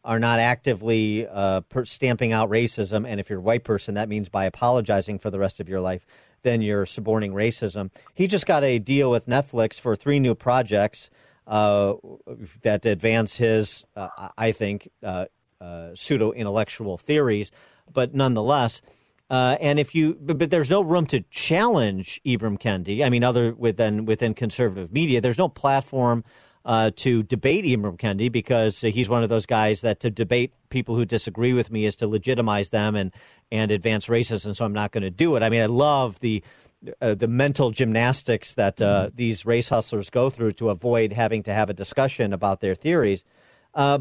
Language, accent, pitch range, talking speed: English, American, 110-140 Hz, 185 wpm